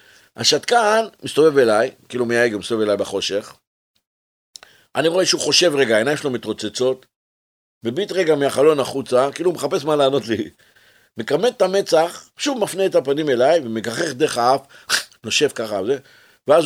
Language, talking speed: Hebrew, 150 wpm